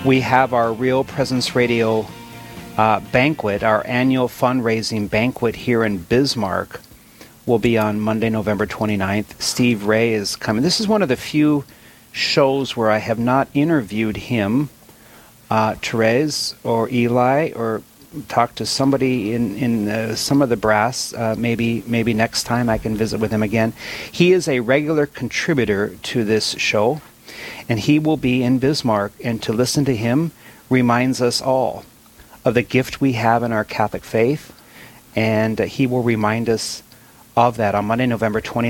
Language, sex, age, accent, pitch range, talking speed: English, male, 40-59, American, 110-130 Hz, 165 wpm